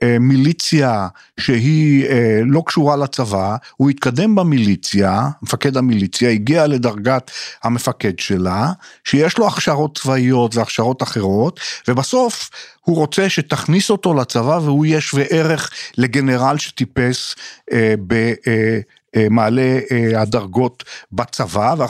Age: 50-69